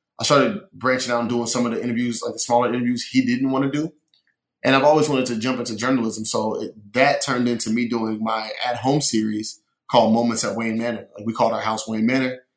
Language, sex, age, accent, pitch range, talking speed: English, male, 20-39, American, 110-125 Hz, 235 wpm